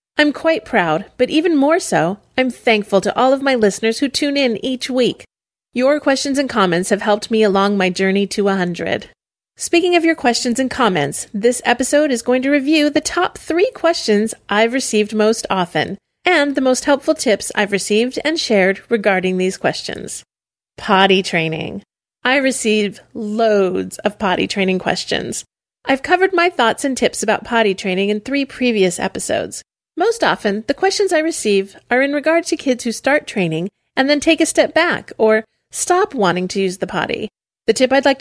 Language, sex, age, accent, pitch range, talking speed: English, female, 30-49, American, 200-285 Hz, 185 wpm